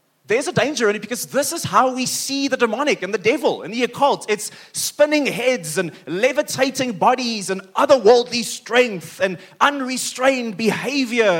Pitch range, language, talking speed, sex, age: 185-250 Hz, English, 165 wpm, male, 30-49